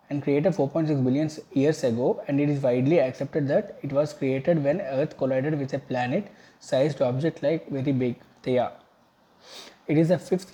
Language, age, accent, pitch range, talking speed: English, 20-39, Indian, 130-155 Hz, 175 wpm